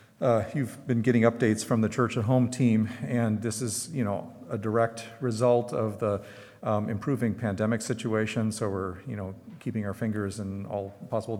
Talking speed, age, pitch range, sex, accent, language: 185 wpm, 40-59, 100-120 Hz, male, American, English